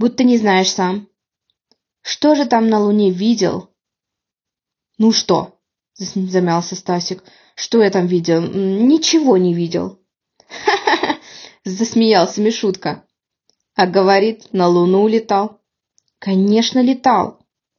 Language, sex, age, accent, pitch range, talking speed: Ukrainian, female, 20-39, native, 190-255 Hz, 105 wpm